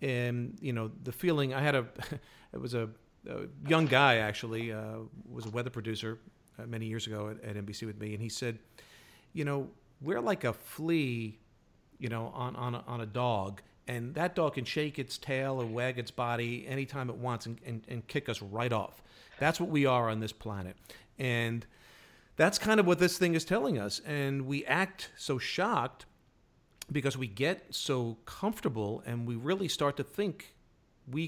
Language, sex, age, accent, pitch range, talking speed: English, male, 50-69, American, 115-150 Hz, 190 wpm